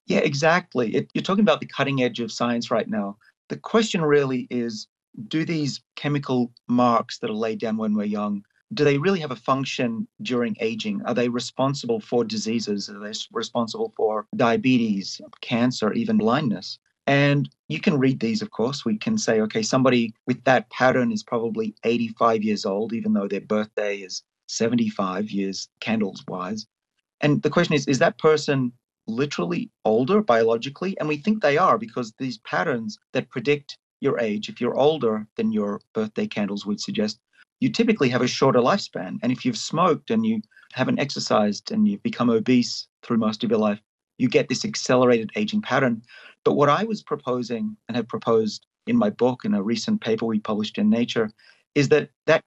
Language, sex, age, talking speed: English, male, 30-49, 180 wpm